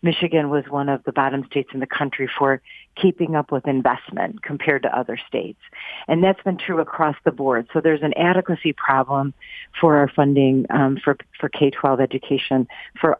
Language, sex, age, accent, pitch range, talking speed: English, female, 40-59, American, 140-175 Hz, 180 wpm